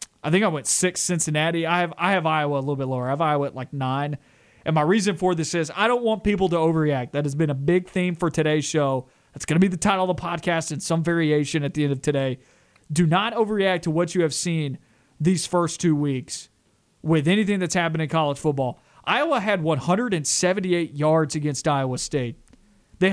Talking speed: 225 wpm